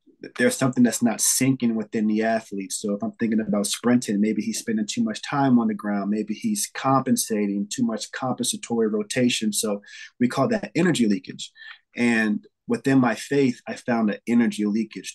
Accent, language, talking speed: American, English, 180 wpm